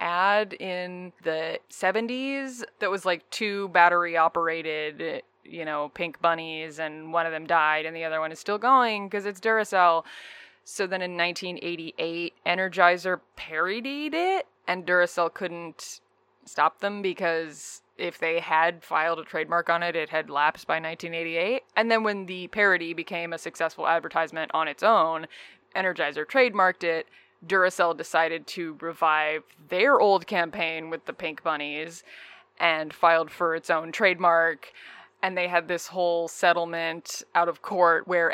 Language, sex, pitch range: English, female, 165-190 Hz